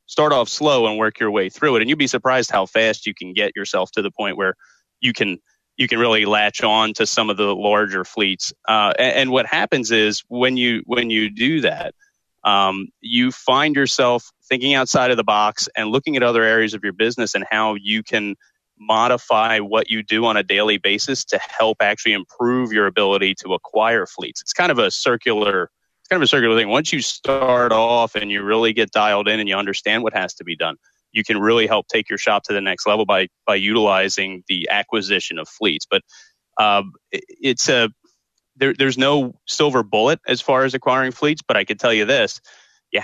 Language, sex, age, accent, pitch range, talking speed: English, male, 30-49, American, 105-125 Hz, 215 wpm